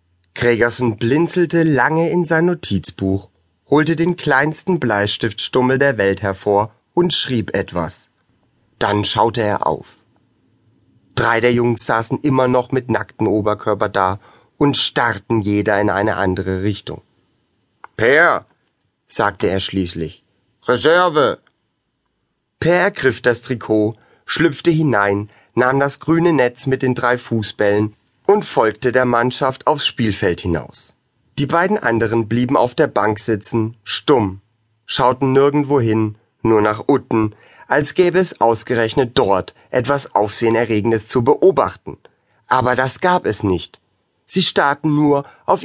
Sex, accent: male, German